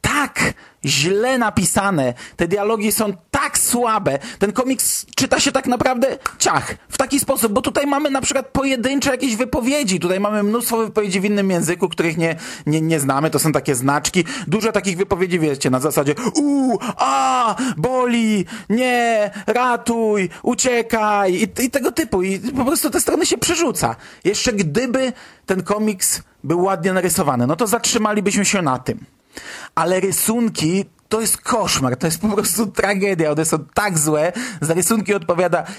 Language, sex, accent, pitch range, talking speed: Polish, male, native, 145-225 Hz, 160 wpm